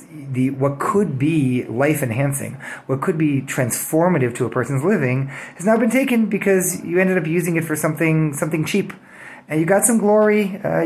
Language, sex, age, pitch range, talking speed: English, male, 30-49, 125-170 Hz, 180 wpm